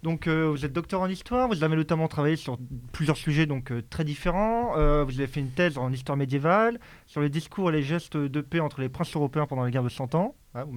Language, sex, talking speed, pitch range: French, male, 260 wpm, 130-165 Hz